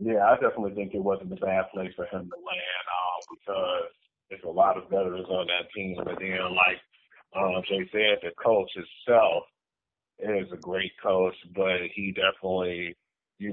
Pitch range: 95-130 Hz